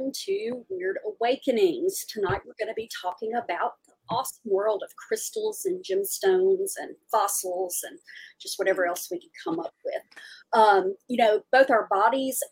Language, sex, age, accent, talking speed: English, female, 40-59, American, 165 wpm